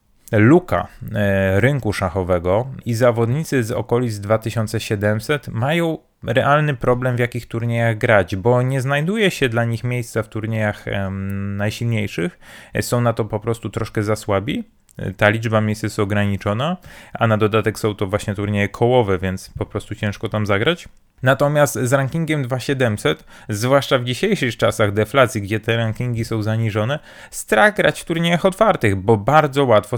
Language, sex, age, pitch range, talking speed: Polish, male, 30-49, 105-125 Hz, 150 wpm